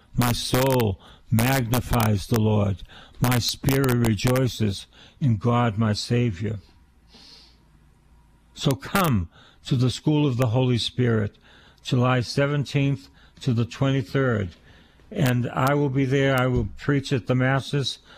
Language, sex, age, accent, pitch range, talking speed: English, male, 60-79, American, 105-135 Hz, 125 wpm